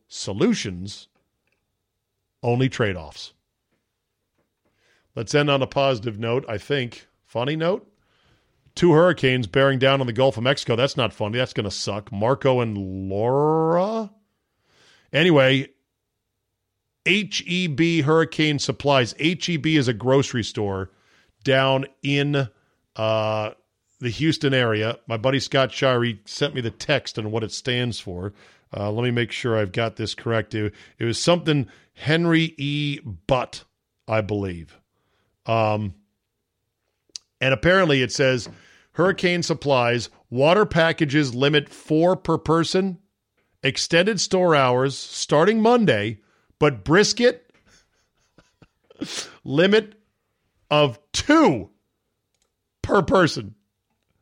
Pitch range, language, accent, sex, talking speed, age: 110-150 Hz, English, American, male, 115 wpm, 40-59